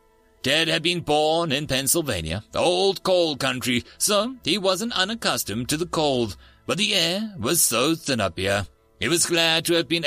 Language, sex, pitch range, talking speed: English, male, 115-175 Hz, 180 wpm